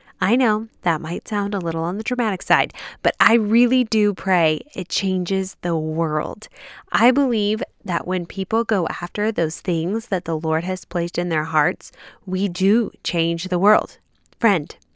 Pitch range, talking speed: 170-220 Hz, 175 wpm